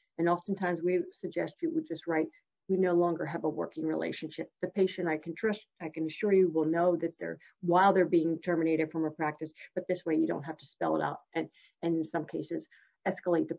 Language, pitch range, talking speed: English, 160-190 Hz, 230 wpm